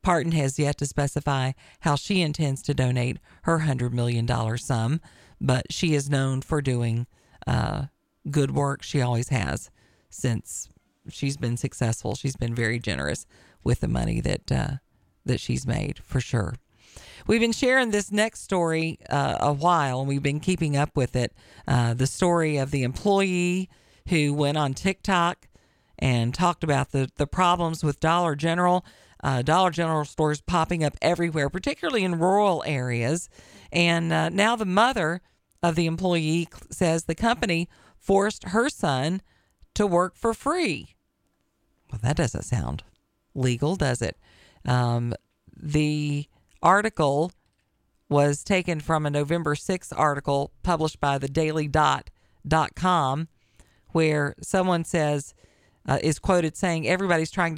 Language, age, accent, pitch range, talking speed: English, 40-59, American, 130-175 Hz, 145 wpm